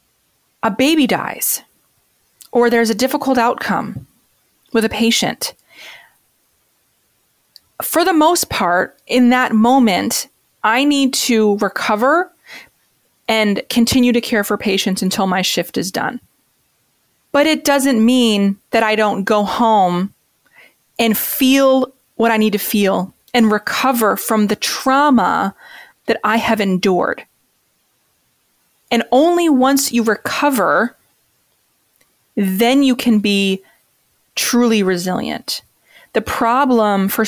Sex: female